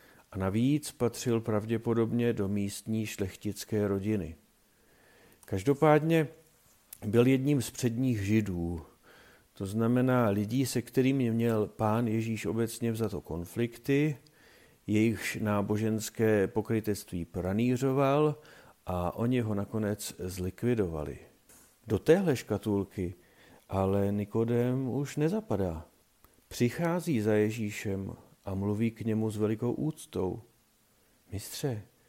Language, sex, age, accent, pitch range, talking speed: Czech, male, 50-69, native, 100-125 Hz, 95 wpm